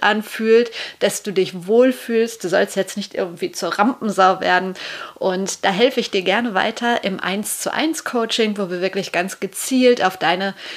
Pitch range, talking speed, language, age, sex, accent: 190-235 Hz, 180 wpm, German, 30-49, female, German